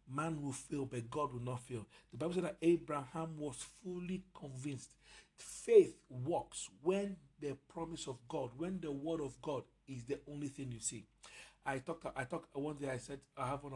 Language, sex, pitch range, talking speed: English, male, 120-145 Hz, 195 wpm